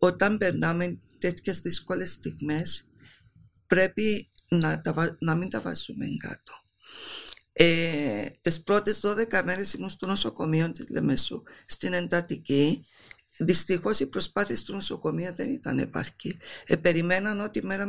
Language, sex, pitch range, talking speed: Greek, female, 165-195 Hz, 125 wpm